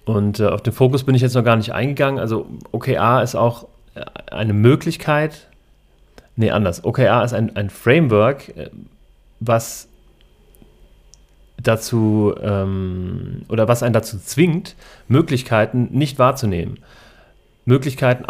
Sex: male